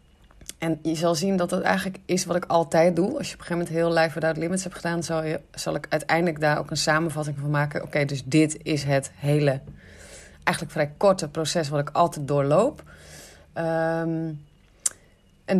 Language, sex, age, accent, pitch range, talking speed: Dutch, female, 30-49, Dutch, 150-180 Hz, 200 wpm